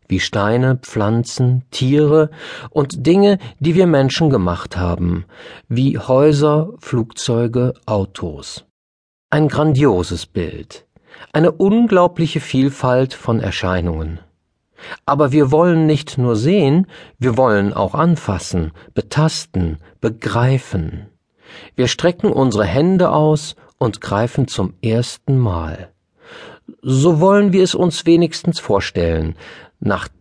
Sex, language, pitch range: male, German, 95-155 Hz